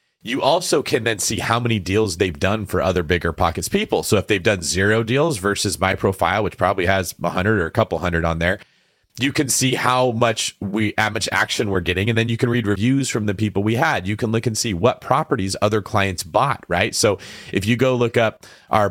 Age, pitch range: 30-49, 100-130 Hz